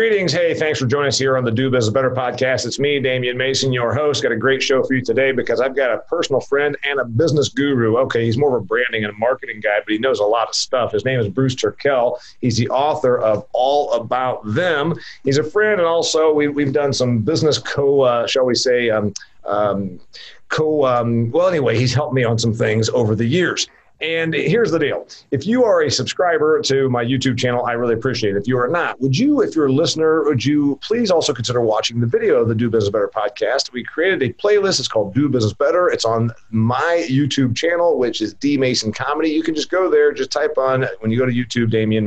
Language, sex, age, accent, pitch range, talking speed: English, male, 40-59, American, 120-160 Hz, 240 wpm